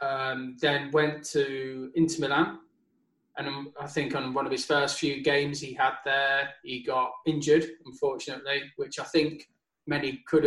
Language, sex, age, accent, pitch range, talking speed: English, male, 20-39, British, 140-160 Hz, 160 wpm